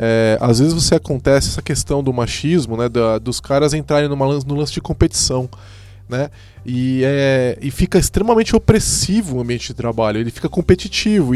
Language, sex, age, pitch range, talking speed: Portuguese, male, 20-39, 130-195 Hz, 170 wpm